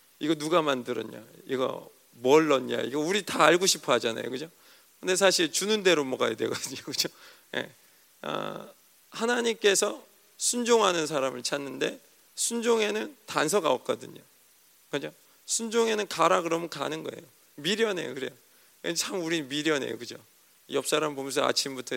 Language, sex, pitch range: Korean, male, 155-210 Hz